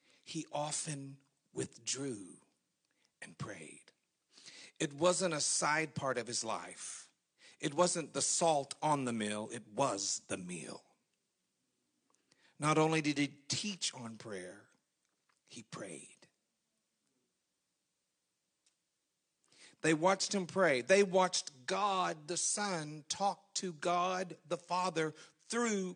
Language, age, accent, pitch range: English, 50-69, American, 130-180 Hz